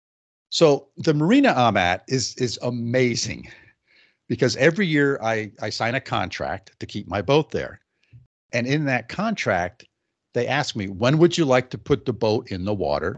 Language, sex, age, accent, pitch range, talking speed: English, male, 50-69, American, 105-140 Hz, 180 wpm